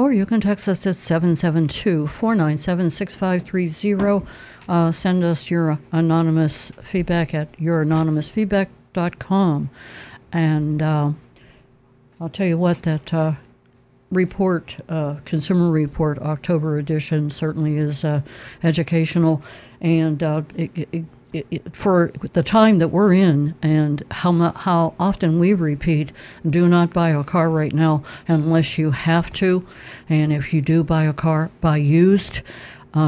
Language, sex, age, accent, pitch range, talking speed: English, female, 60-79, American, 150-170 Hz, 135 wpm